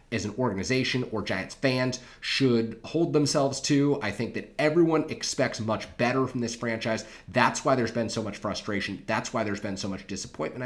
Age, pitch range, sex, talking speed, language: 30-49, 110-135 Hz, male, 190 wpm, English